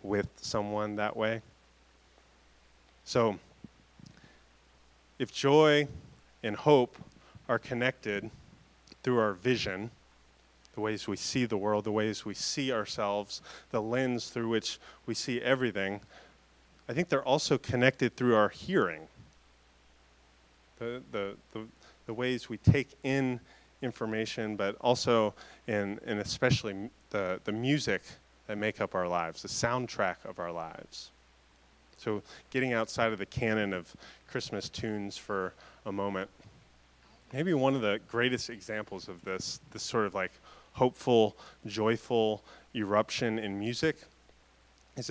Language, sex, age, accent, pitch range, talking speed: English, male, 30-49, American, 75-120 Hz, 130 wpm